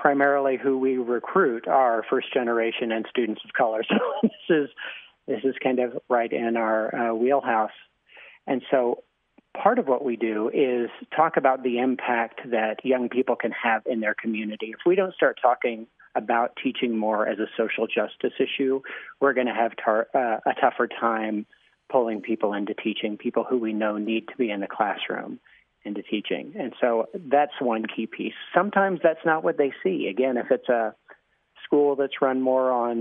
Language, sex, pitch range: English, male, 115-130 Hz